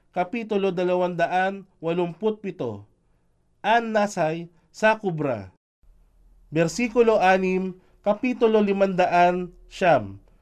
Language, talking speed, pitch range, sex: Filipino, 60 wpm, 160-210 Hz, male